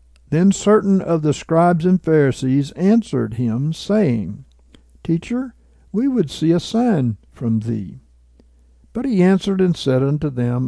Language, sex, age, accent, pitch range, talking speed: English, male, 60-79, American, 110-155 Hz, 140 wpm